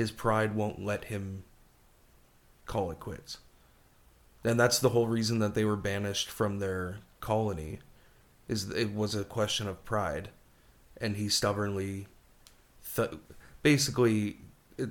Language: English